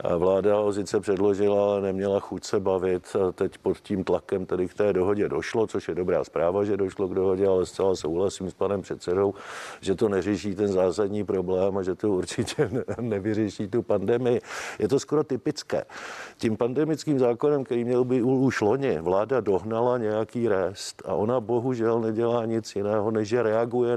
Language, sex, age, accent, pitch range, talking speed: Czech, male, 50-69, native, 105-120 Hz, 180 wpm